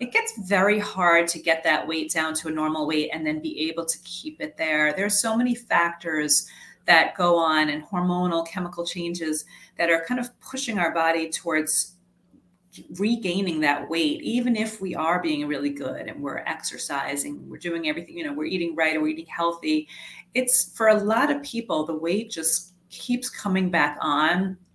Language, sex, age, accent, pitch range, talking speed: English, female, 30-49, American, 160-215 Hz, 190 wpm